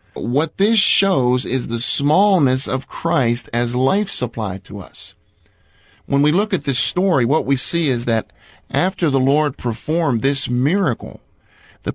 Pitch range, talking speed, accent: 120-170 Hz, 155 wpm, American